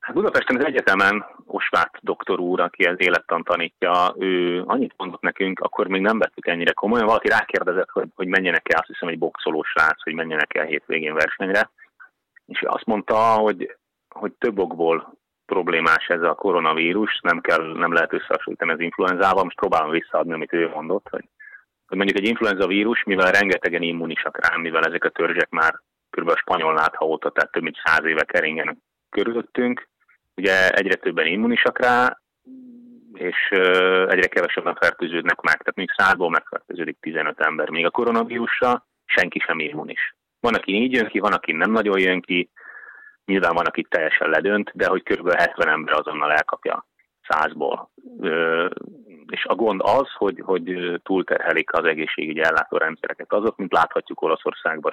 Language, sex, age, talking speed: Hungarian, male, 30-49, 160 wpm